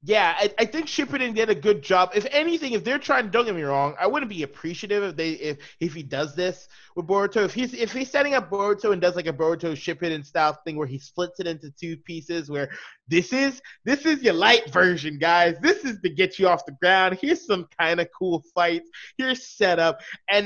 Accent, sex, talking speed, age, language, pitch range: American, male, 225 wpm, 20-39, English, 170-230 Hz